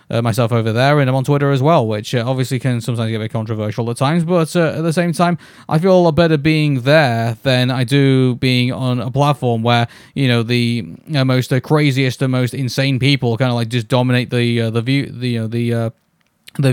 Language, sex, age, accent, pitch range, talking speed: English, male, 20-39, British, 120-155 Hz, 245 wpm